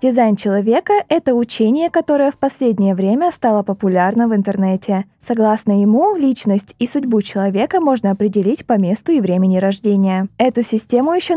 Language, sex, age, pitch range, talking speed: Russian, female, 20-39, 200-270 Hz, 150 wpm